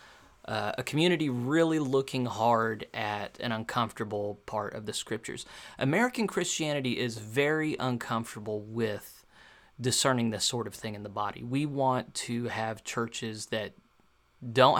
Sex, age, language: male, 30-49, English